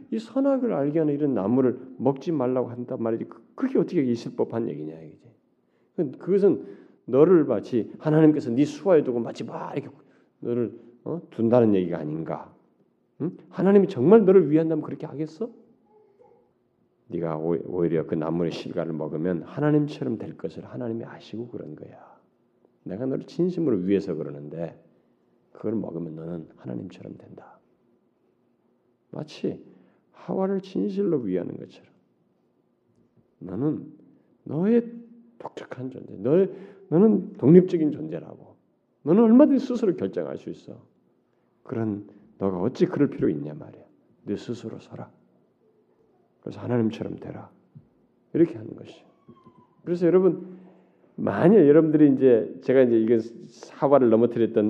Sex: male